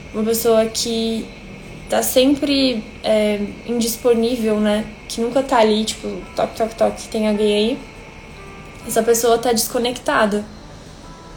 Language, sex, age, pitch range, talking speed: Portuguese, female, 10-29, 220-275 Hz, 120 wpm